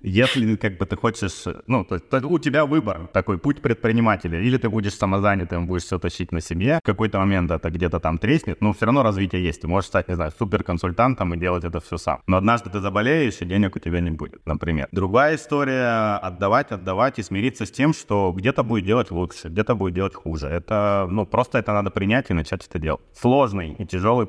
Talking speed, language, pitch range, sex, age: 215 wpm, Russian, 85-110 Hz, male, 30-49